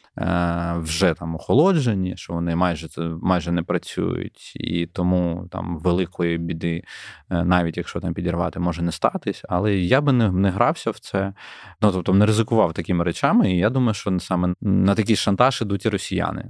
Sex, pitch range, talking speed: male, 90-110 Hz, 165 wpm